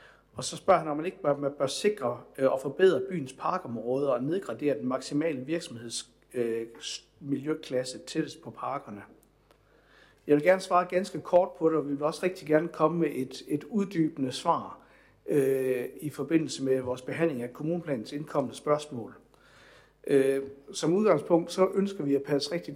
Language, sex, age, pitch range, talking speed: Danish, male, 60-79, 130-165 Hz, 150 wpm